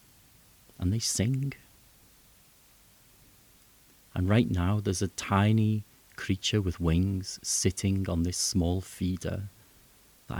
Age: 40-59